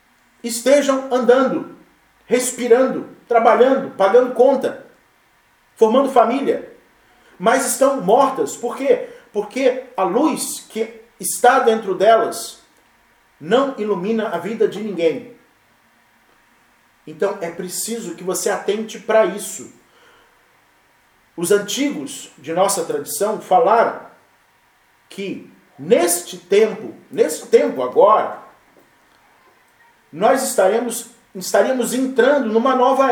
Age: 40-59